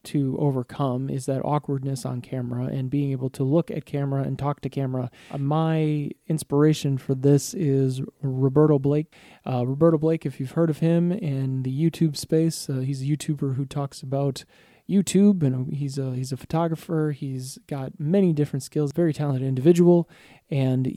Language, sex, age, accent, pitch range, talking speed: English, male, 20-39, American, 135-160 Hz, 170 wpm